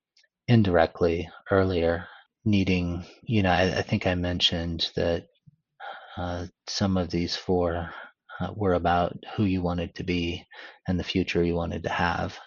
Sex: male